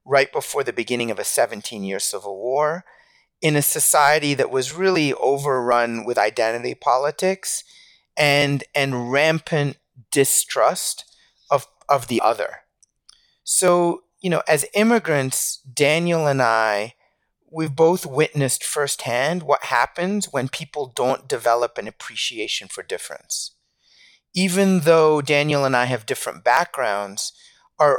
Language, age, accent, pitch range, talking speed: English, 30-49, American, 125-170 Hz, 125 wpm